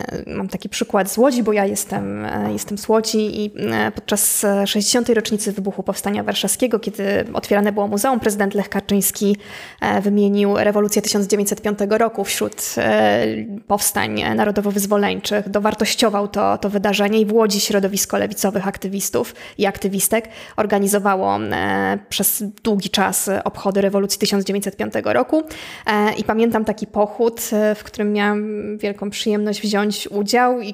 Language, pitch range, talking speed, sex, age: Polish, 200-235 Hz, 125 wpm, female, 20-39